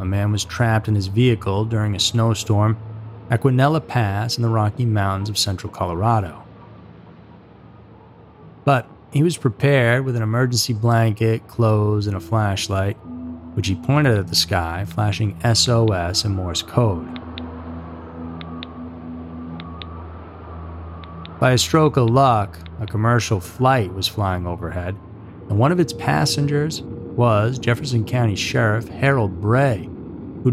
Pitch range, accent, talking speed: 85-115 Hz, American, 130 wpm